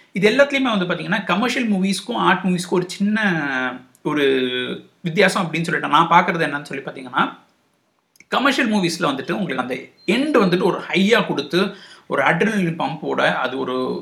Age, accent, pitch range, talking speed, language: 60-79, native, 170-235 Hz, 150 wpm, Tamil